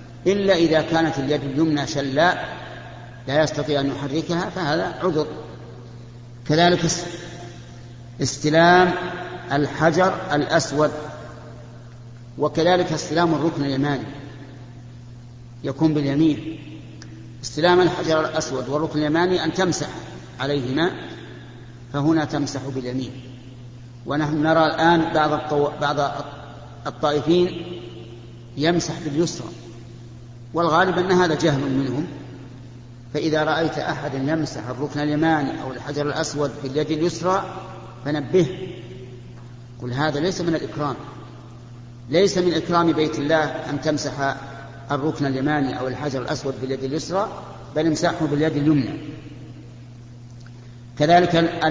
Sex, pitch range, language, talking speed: male, 120-160 Hz, Arabic, 95 wpm